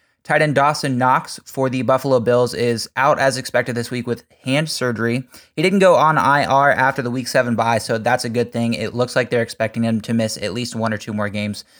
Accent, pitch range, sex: American, 115-130 Hz, male